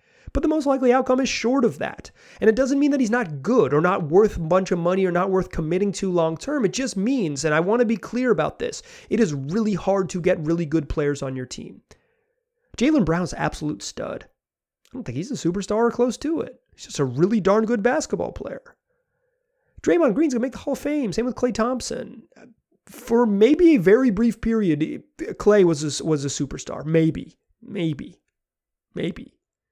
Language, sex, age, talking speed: English, male, 30-49, 210 wpm